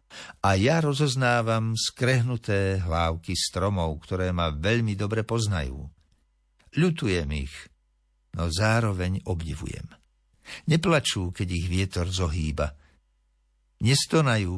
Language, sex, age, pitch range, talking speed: Slovak, male, 60-79, 80-115 Hz, 90 wpm